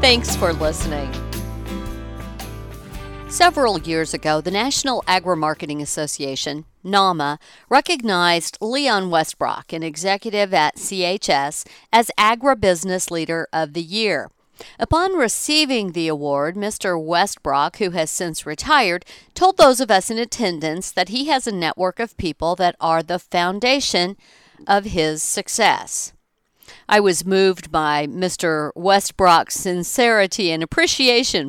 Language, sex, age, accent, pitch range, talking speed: English, female, 50-69, American, 160-215 Hz, 120 wpm